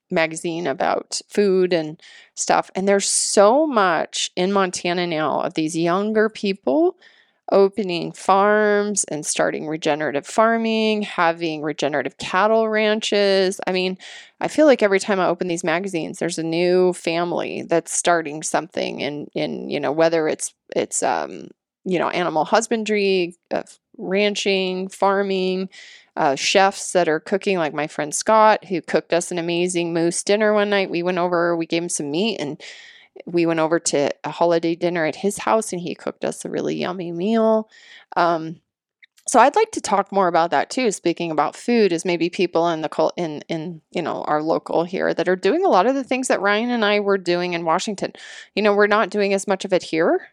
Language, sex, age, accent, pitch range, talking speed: English, female, 20-39, American, 170-205 Hz, 185 wpm